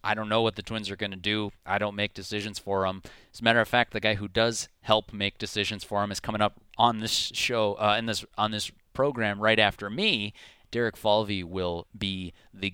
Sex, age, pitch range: male, 30-49, 95-120 Hz